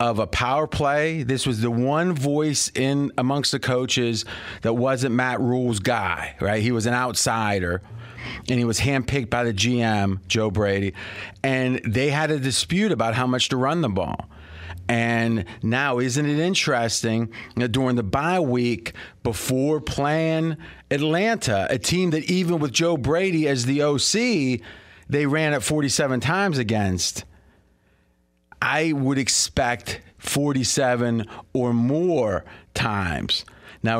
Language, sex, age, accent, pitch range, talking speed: English, male, 40-59, American, 115-150 Hz, 145 wpm